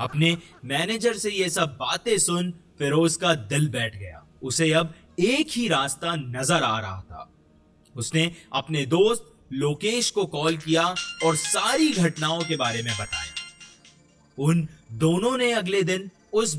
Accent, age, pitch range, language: native, 30-49, 120-185 Hz, Hindi